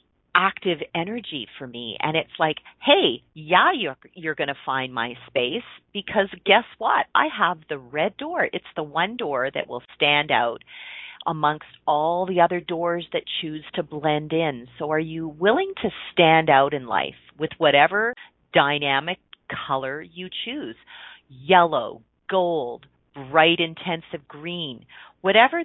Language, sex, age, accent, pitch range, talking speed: English, female, 40-59, American, 155-230 Hz, 145 wpm